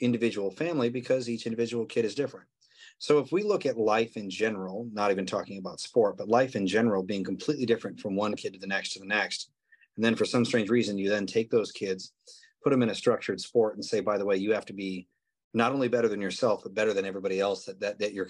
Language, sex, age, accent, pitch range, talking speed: English, male, 30-49, American, 95-125 Hz, 255 wpm